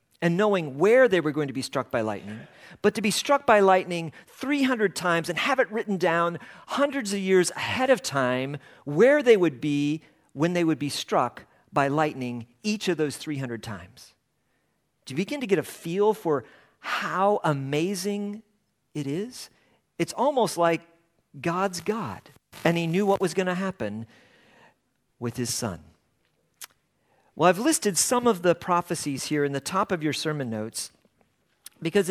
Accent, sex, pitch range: American, male, 140-200 Hz